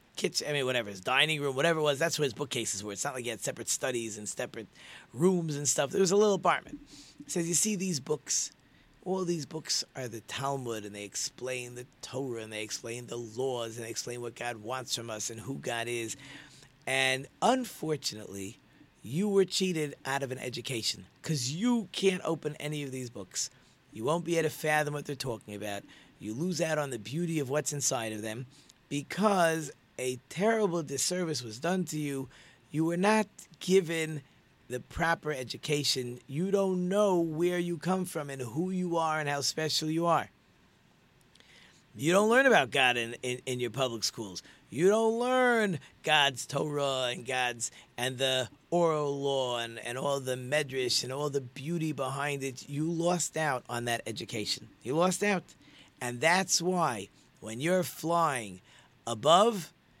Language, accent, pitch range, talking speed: English, American, 125-170 Hz, 185 wpm